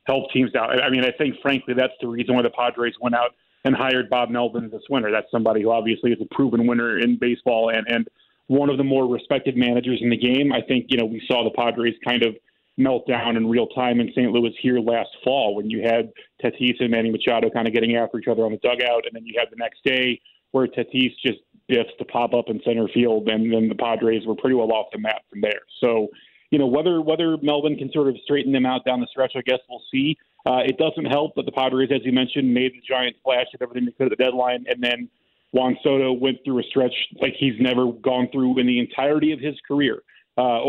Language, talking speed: English, 250 wpm